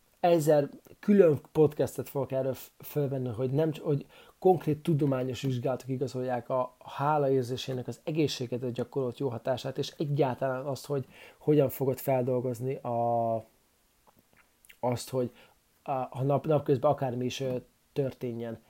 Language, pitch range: Hungarian, 125-145 Hz